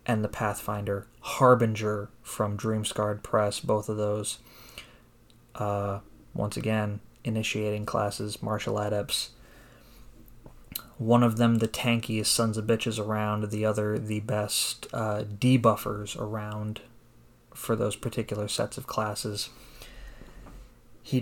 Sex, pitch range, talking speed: male, 105-120 Hz, 115 wpm